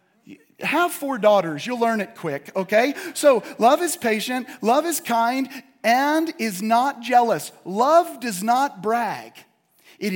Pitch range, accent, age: 175-275 Hz, American, 40-59